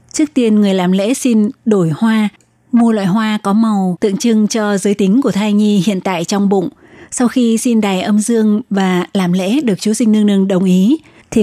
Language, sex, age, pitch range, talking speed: Vietnamese, female, 20-39, 195-225 Hz, 220 wpm